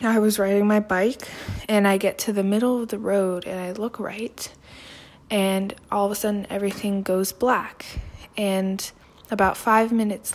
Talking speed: 175 wpm